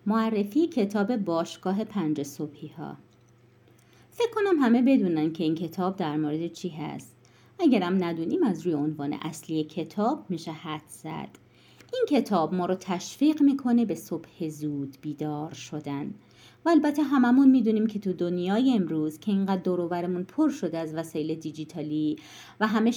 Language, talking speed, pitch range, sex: Persian, 145 wpm, 155-245 Hz, female